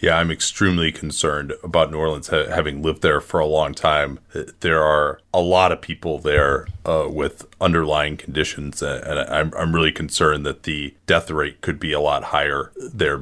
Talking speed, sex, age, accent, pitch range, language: 175 wpm, male, 30-49, American, 85-105 Hz, English